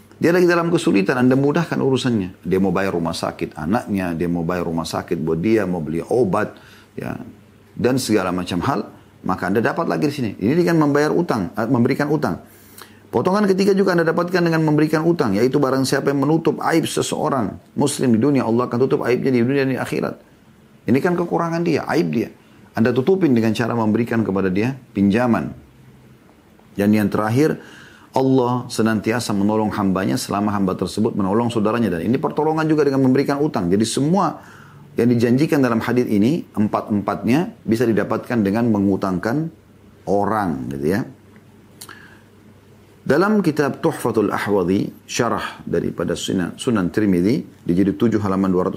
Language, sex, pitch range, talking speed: Indonesian, male, 100-140 Hz, 155 wpm